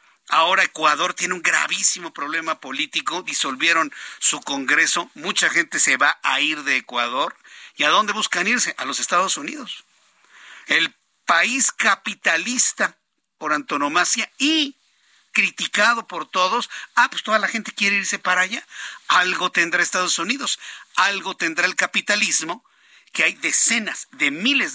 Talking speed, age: 140 wpm, 50-69